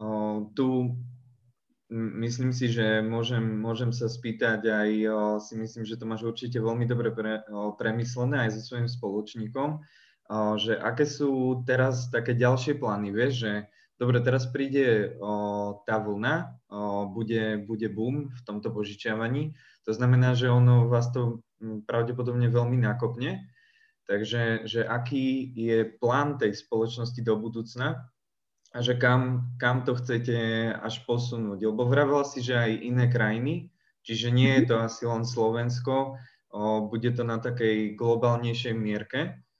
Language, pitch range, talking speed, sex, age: Slovak, 110-125 Hz, 150 wpm, male, 20-39